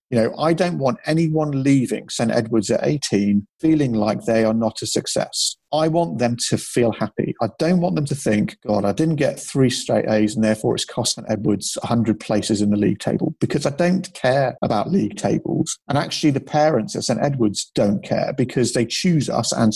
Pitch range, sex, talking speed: 115-160 Hz, male, 215 wpm